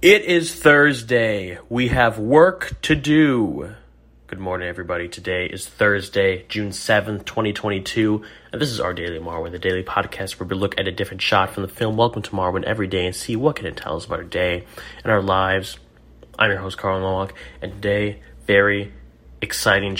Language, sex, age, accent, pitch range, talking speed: English, male, 30-49, American, 90-115 Hz, 185 wpm